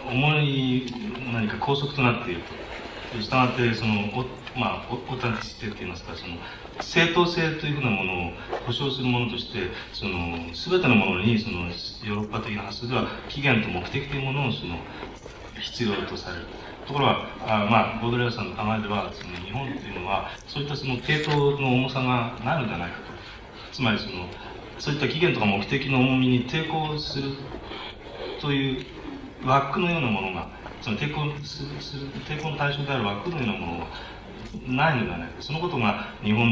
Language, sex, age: Japanese, male, 30-49